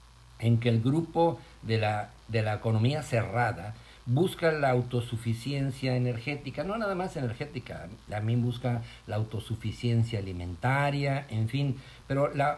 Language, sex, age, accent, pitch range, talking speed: Spanish, male, 50-69, Mexican, 115-135 Hz, 130 wpm